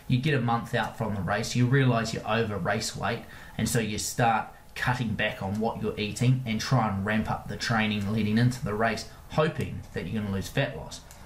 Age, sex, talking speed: 20-39, male, 225 wpm